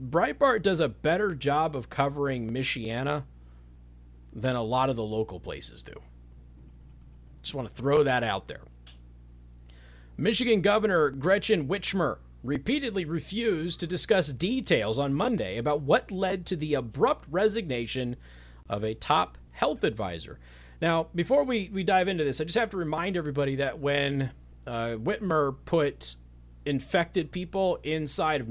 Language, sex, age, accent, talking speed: English, male, 40-59, American, 145 wpm